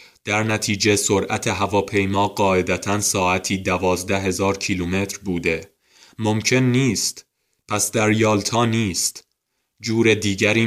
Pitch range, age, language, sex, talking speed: 95-115 Hz, 20-39, Persian, male, 100 wpm